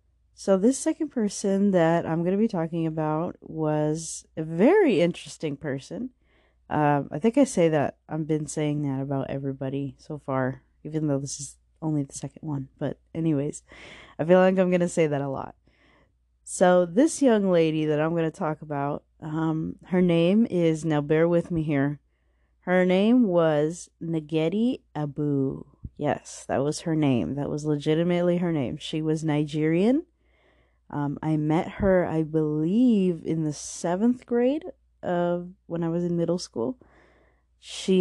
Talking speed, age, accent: 165 wpm, 30-49, American